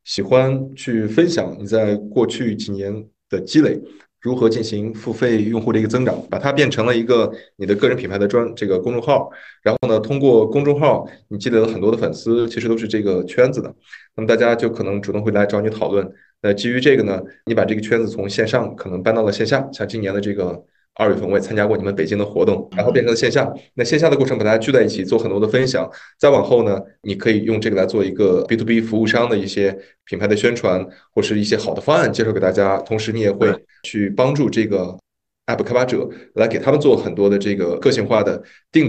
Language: Chinese